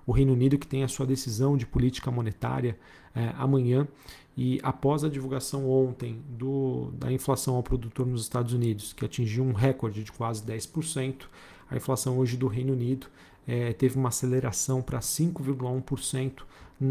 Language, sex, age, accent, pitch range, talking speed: Portuguese, male, 40-59, Brazilian, 120-135 Hz, 155 wpm